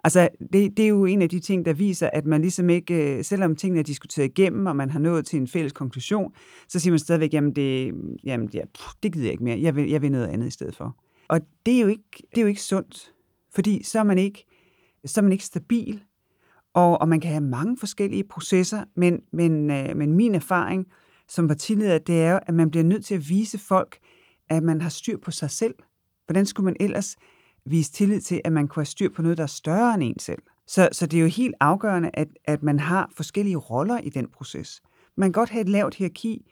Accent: native